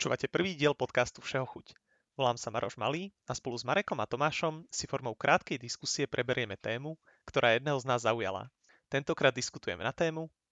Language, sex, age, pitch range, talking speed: Slovak, male, 30-49, 115-160 Hz, 175 wpm